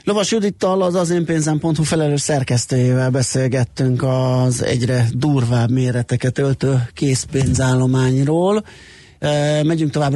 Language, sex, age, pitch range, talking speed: Hungarian, male, 30-49, 120-140 Hz, 100 wpm